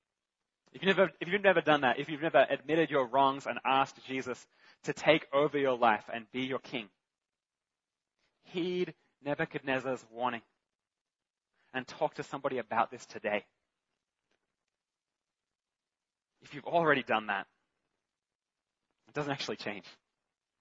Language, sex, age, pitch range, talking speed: English, male, 20-39, 120-145 Hz, 125 wpm